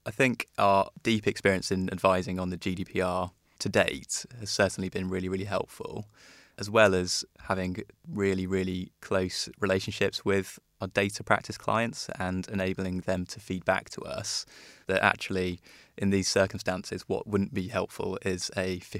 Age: 20-39